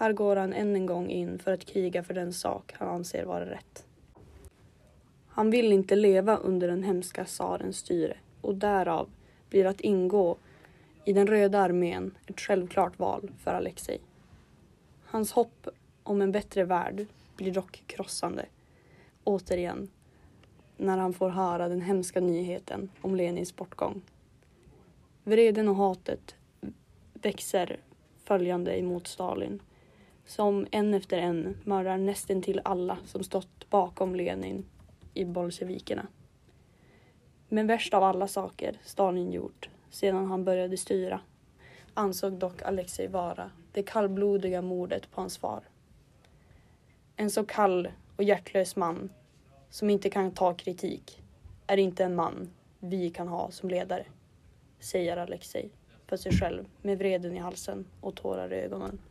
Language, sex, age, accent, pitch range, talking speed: Swedish, female, 20-39, native, 180-200 Hz, 135 wpm